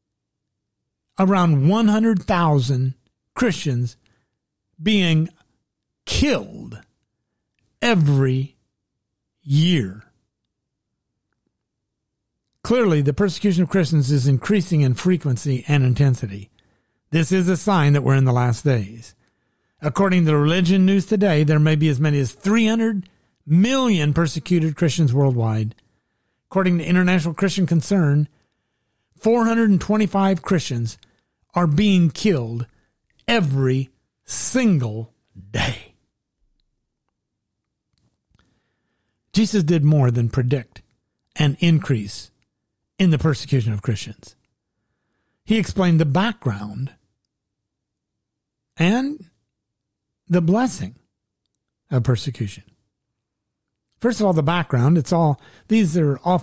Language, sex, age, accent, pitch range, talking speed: English, male, 50-69, American, 115-180 Hz, 95 wpm